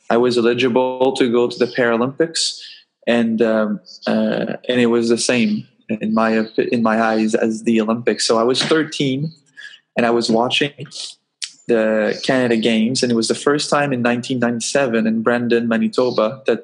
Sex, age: male, 20-39